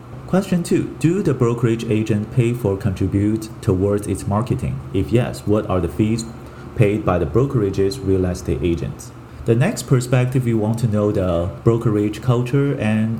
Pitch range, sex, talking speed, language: 100-125 Hz, male, 165 wpm, English